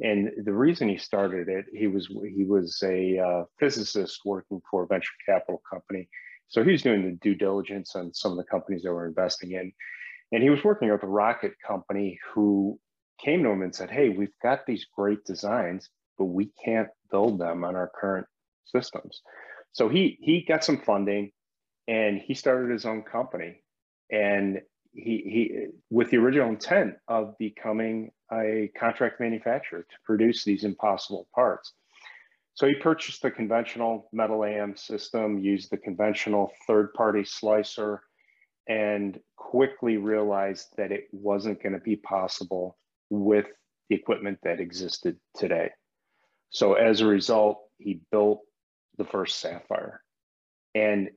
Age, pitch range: 30-49, 100-110 Hz